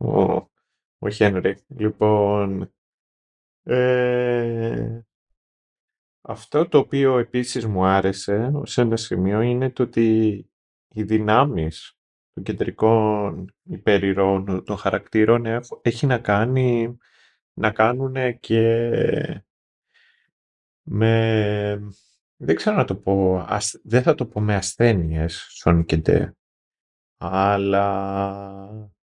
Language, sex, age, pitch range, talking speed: Greek, male, 30-49, 95-115 Hz, 90 wpm